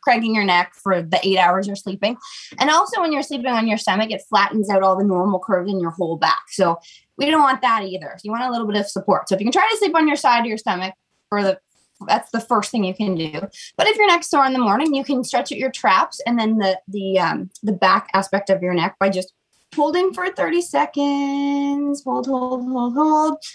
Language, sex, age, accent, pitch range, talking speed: English, female, 20-39, American, 195-275 Hz, 250 wpm